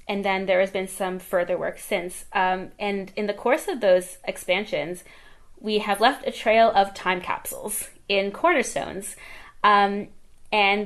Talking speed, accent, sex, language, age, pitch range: 160 wpm, American, female, English, 20-39, 180-225 Hz